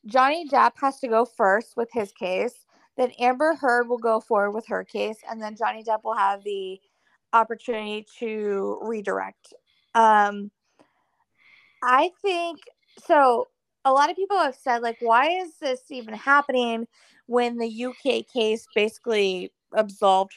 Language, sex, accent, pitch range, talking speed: English, female, American, 205-260 Hz, 145 wpm